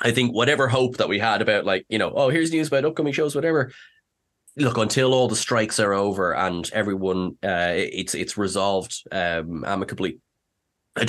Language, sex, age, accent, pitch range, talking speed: English, male, 20-39, Irish, 95-130 Hz, 185 wpm